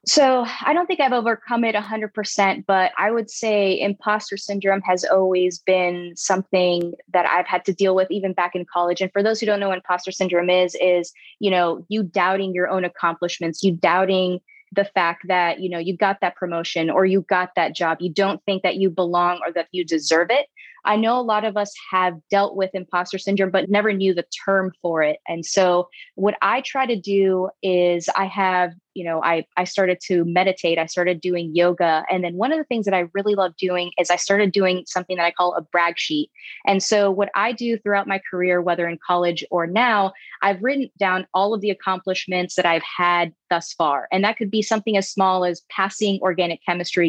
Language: English